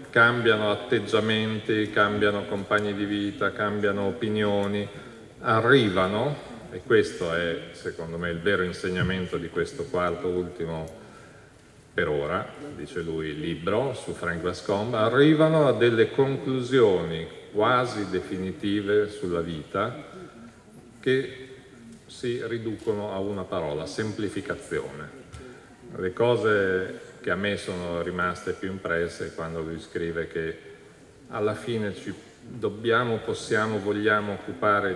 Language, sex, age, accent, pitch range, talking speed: Italian, male, 40-59, native, 95-115 Hz, 110 wpm